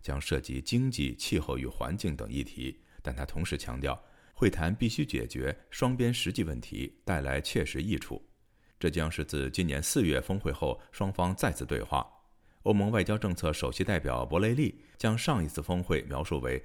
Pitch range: 70-105 Hz